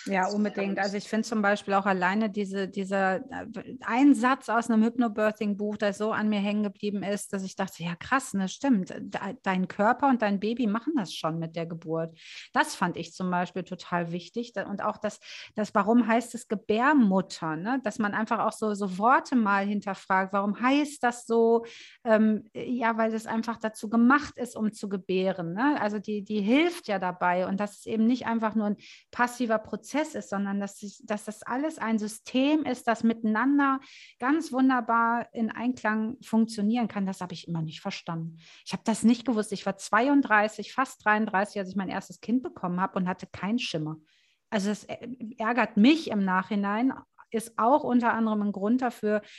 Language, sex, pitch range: German, female, 195-235 Hz